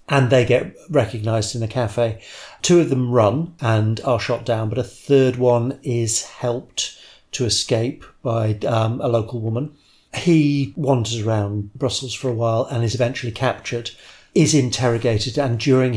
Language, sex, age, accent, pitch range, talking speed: English, male, 40-59, British, 110-130 Hz, 160 wpm